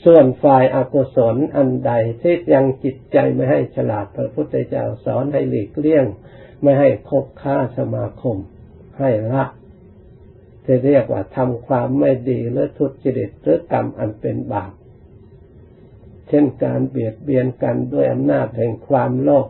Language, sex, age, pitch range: Thai, male, 60-79, 100-135 Hz